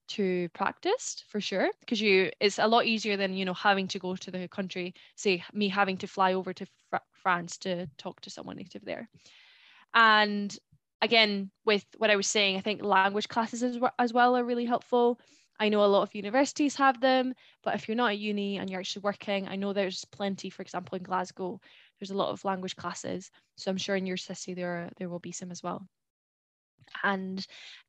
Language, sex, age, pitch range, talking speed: English, female, 10-29, 190-230 Hz, 215 wpm